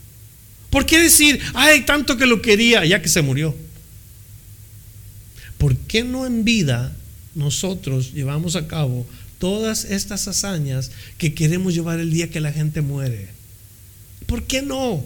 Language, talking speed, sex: Spanish, 145 wpm, male